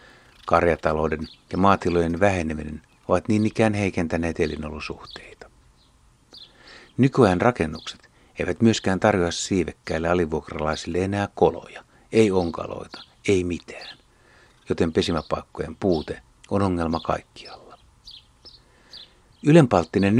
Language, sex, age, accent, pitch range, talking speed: Finnish, male, 60-79, native, 80-110 Hz, 85 wpm